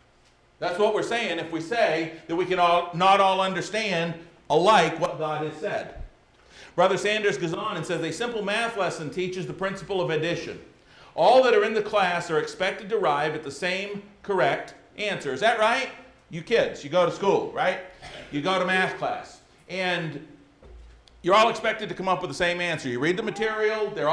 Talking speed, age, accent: 200 wpm, 50-69, American